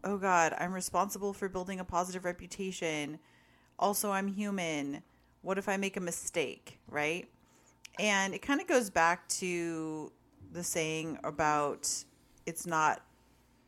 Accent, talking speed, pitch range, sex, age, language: American, 135 wpm, 145-180 Hz, female, 40-59, English